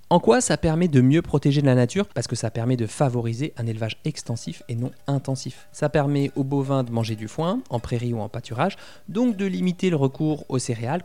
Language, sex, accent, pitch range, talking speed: French, male, French, 120-150 Hz, 225 wpm